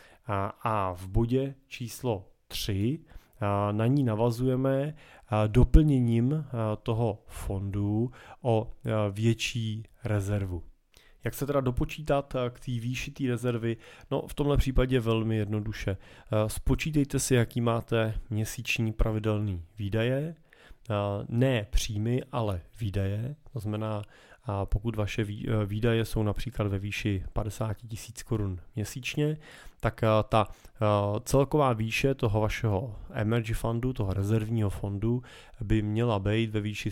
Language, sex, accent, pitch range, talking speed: Czech, male, native, 105-120 Hz, 110 wpm